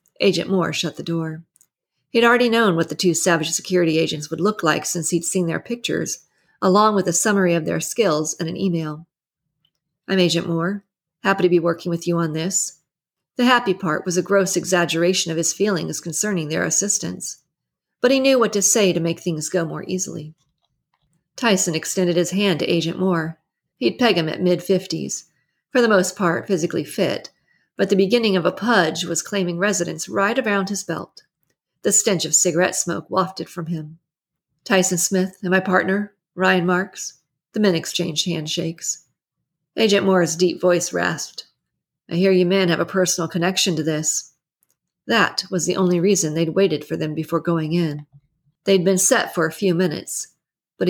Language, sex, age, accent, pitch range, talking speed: English, female, 40-59, American, 165-190 Hz, 180 wpm